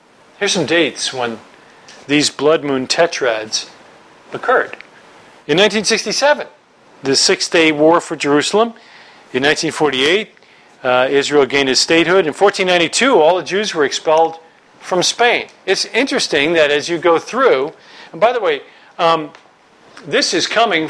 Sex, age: male, 40-59